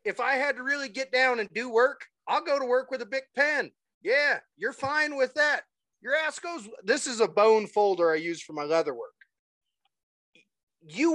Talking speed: 205 wpm